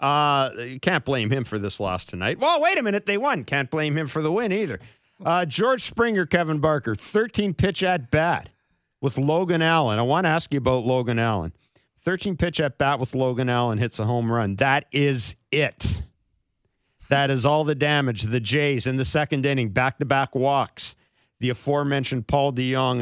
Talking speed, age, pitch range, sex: 190 wpm, 40-59, 110-140 Hz, male